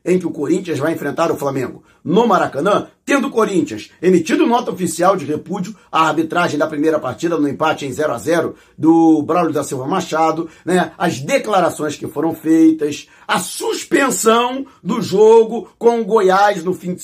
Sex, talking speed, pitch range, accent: male, 175 wpm, 165-225 Hz, Brazilian